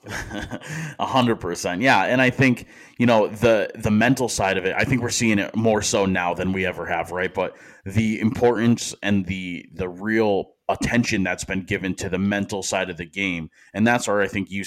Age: 20-39